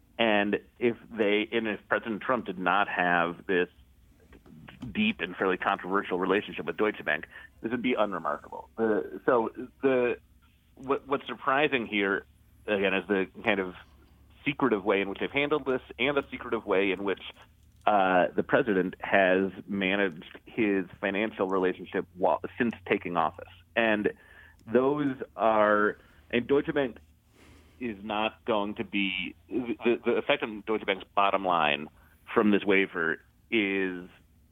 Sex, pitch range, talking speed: male, 95-115 Hz, 150 wpm